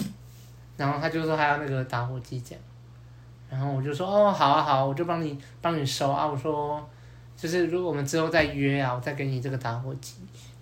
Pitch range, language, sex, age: 130-165 Hz, Chinese, male, 20-39